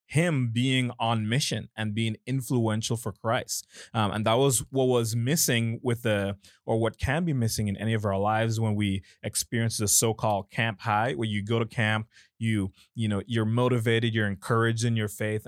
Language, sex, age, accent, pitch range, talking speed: English, male, 20-39, American, 100-115 Hz, 195 wpm